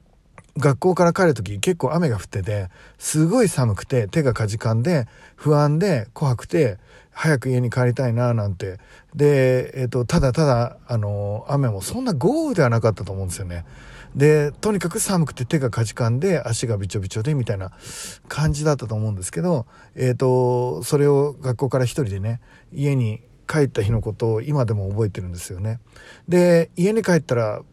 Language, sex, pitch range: Japanese, male, 110-150 Hz